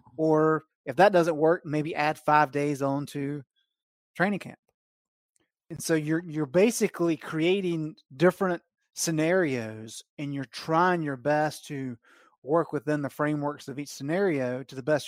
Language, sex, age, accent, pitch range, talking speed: English, male, 30-49, American, 135-170 Hz, 145 wpm